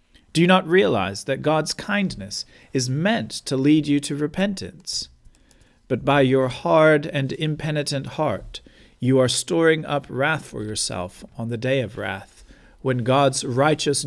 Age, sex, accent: 40-59, male, American